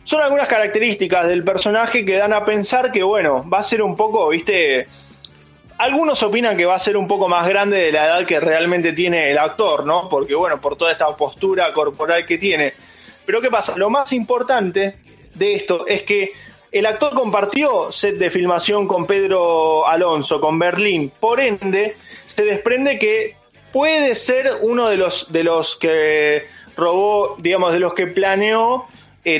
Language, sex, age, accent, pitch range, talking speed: Spanish, male, 20-39, Argentinian, 165-215 Hz, 175 wpm